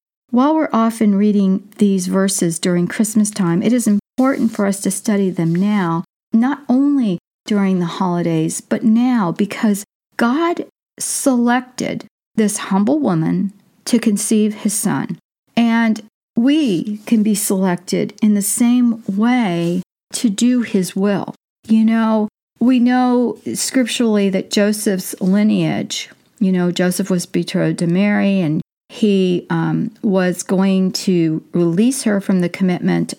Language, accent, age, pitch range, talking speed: English, American, 50-69, 175-225 Hz, 135 wpm